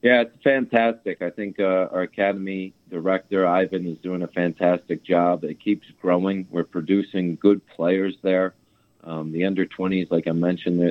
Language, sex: English, male